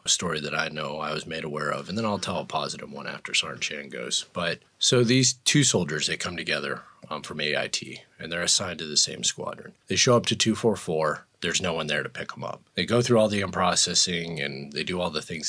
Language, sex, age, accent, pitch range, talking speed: English, male, 30-49, American, 95-125 Hz, 250 wpm